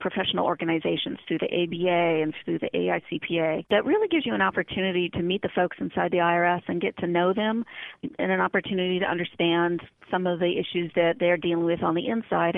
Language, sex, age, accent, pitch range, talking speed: English, female, 40-59, American, 165-195 Hz, 205 wpm